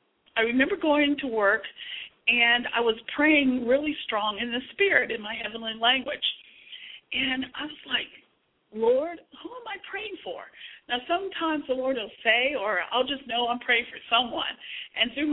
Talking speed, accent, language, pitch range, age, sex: 170 wpm, American, English, 230-295 Hz, 50-69, female